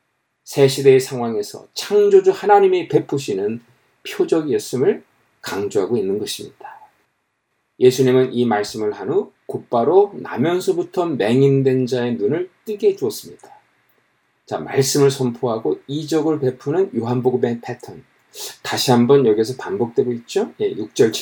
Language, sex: Korean, male